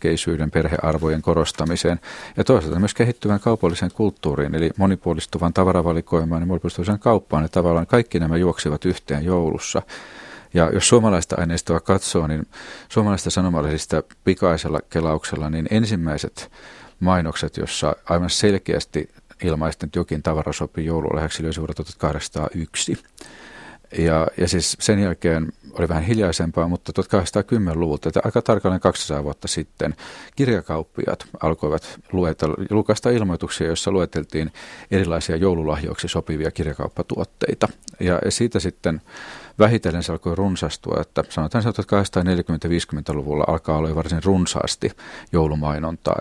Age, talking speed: 40-59, 120 wpm